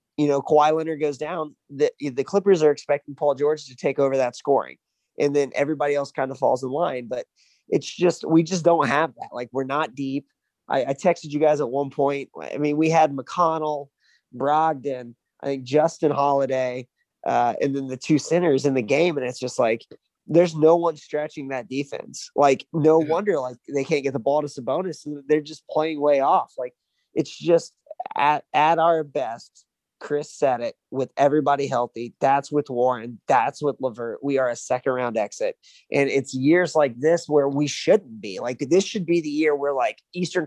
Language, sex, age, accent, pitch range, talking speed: English, male, 20-39, American, 135-155 Hz, 200 wpm